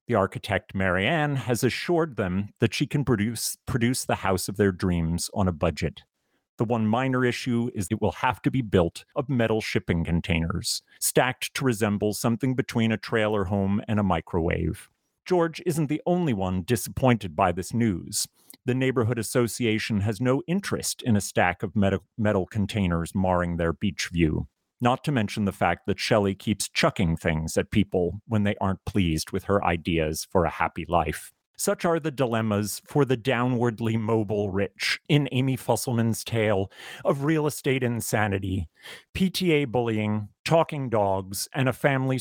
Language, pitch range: English, 95-125 Hz